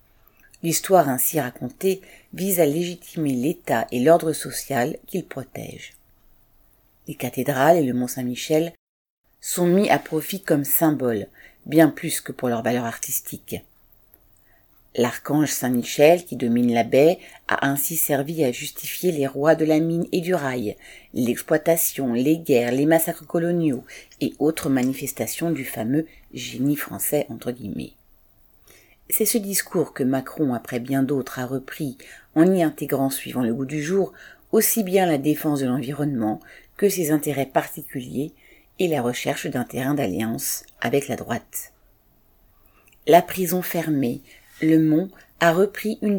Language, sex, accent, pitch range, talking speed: French, female, French, 130-170 Hz, 145 wpm